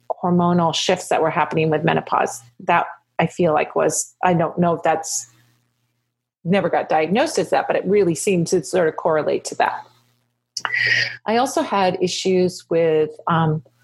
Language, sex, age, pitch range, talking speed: English, female, 40-59, 155-190 Hz, 170 wpm